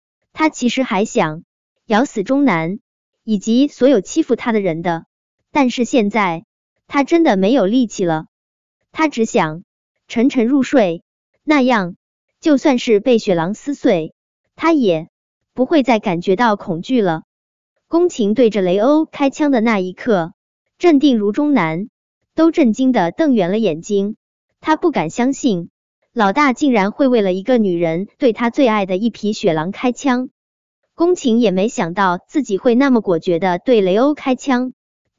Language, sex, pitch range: Chinese, male, 195-275 Hz